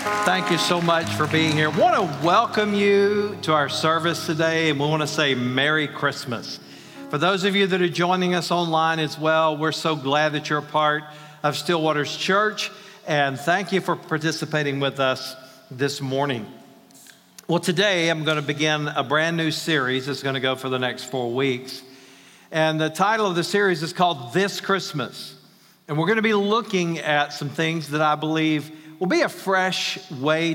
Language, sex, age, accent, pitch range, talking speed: English, male, 50-69, American, 140-175 Hz, 195 wpm